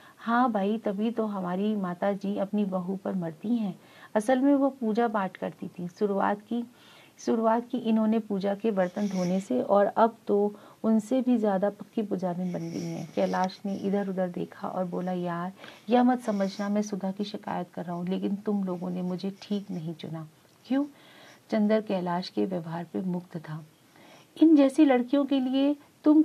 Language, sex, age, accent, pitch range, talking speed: Hindi, female, 50-69, native, 185-225 Hz, 185 wpm